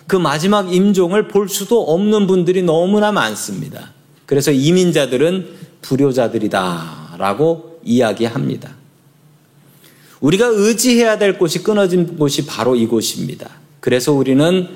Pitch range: 130-170 Hz